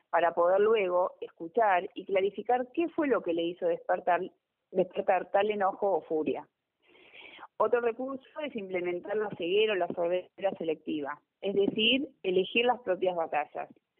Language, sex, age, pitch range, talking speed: Spanish, female, 30-49, 175-225 Hz, 145 wpm